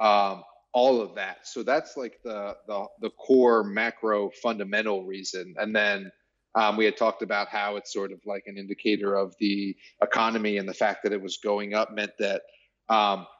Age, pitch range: 30-49, 100-115 Hz